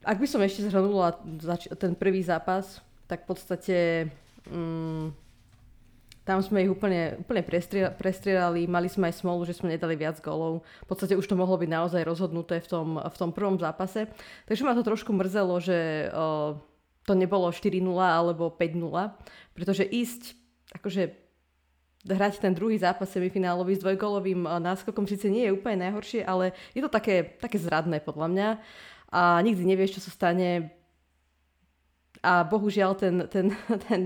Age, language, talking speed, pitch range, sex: 20-39, Slovak, 160 wpm, 170-195 Hz, female